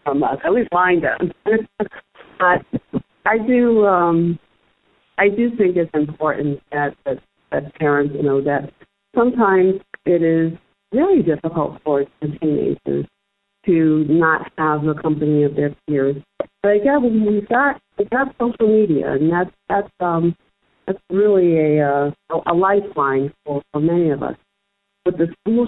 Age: 50-69